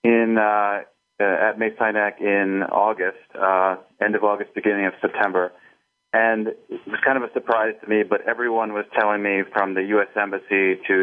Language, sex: English, male